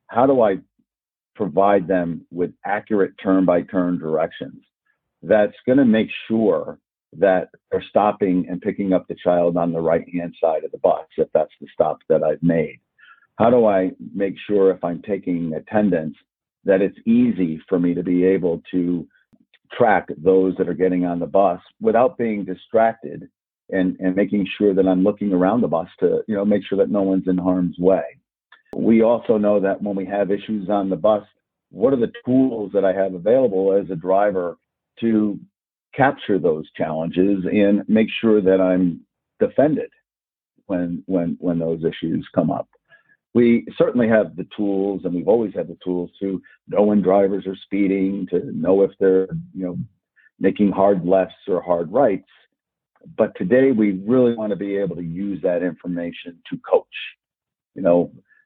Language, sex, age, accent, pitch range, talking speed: English, male, 50-69, American, 90-105 Hz, 175 wpm